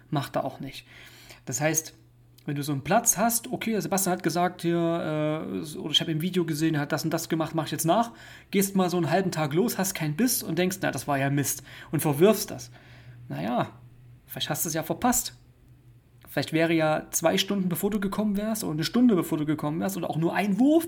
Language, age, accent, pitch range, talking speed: German, 30-49, German, 130-175 Hz, 235 wpm